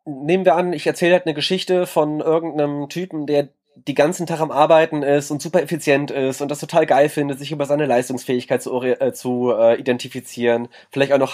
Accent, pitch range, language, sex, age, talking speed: German, 135-160 Hz, German, male, 20-39, 205 wpm